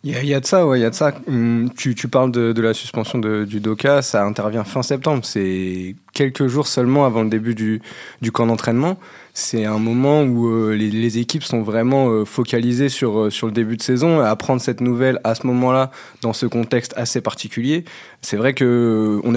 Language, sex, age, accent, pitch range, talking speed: French, male, 20-39, French, 115-140 Hz, 220 wpm